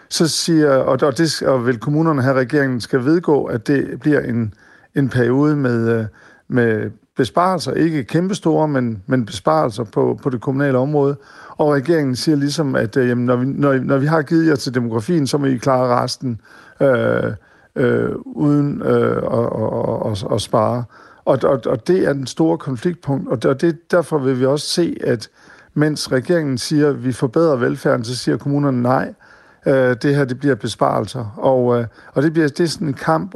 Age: 50-69